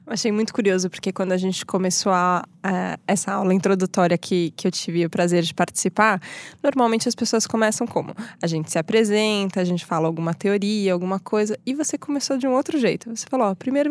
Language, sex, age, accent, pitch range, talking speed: Portuguese, female, 20-39, Brazilian, 185-240 Hz, 210 wpm